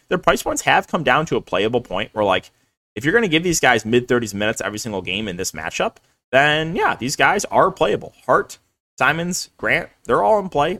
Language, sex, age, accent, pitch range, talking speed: English, male, 20-39, American, 110-140 Hz, 220 wpm